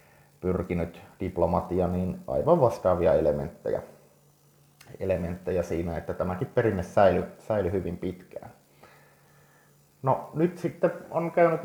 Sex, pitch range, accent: male, 90-125 Hz, native